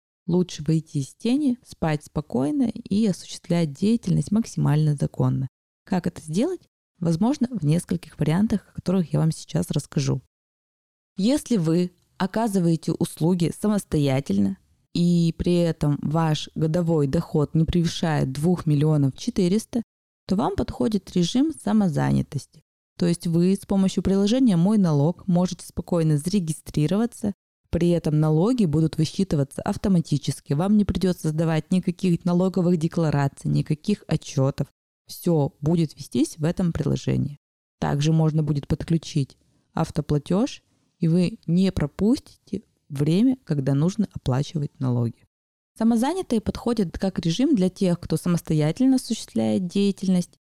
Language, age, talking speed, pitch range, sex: Russian, 20-39, 120 wpm, 150-195 Hz, female